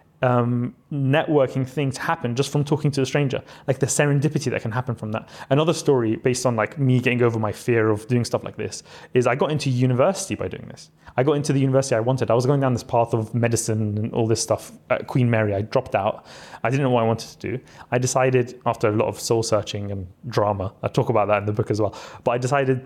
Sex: male